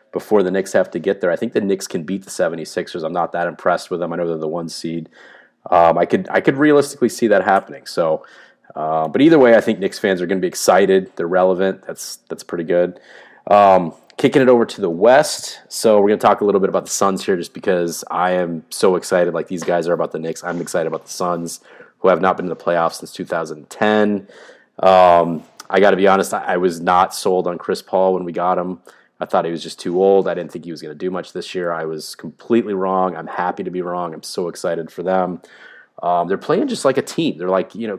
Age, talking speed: 30-49, 255 wpm